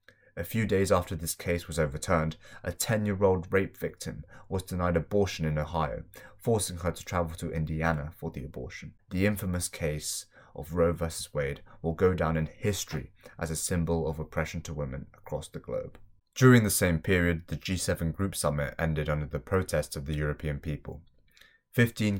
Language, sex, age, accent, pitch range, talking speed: English, male, 20-39, British, 75-90 Hz, 175 wpm